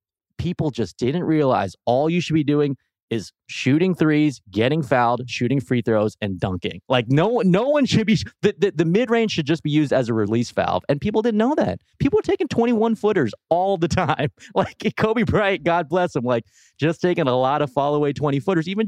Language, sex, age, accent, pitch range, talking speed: English, male, 30-49, American, 120-180 Hz, 220 wpm